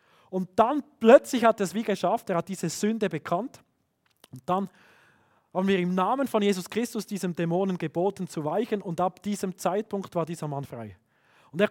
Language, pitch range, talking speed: German, 155-210 Hz, 190 wpm